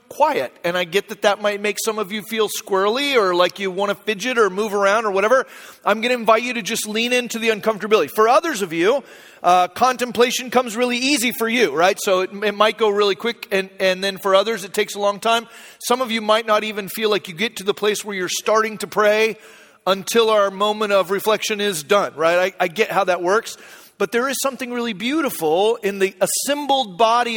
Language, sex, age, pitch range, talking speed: English, male, 40-59, 200-240 Hz, 230 wpm